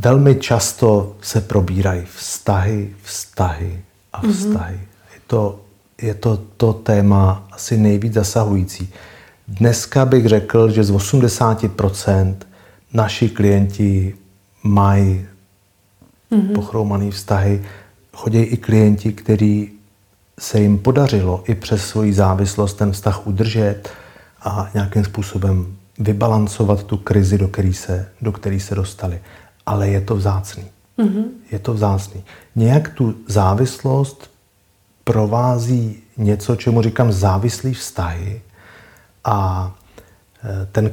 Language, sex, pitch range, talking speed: Czech, male, 100-115 Hz, 105 wpm